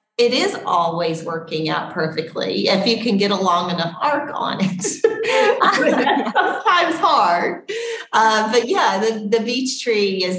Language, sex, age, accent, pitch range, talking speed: English, female, 40-59, American, 170-195 Hz, 150 wpm